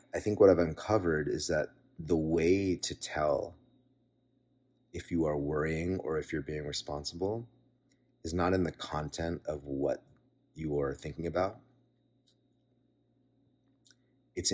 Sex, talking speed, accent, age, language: male, 130 wpm, American, 30-49, English